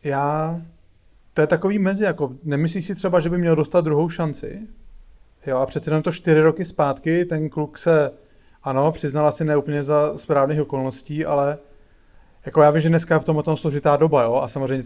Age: 30-49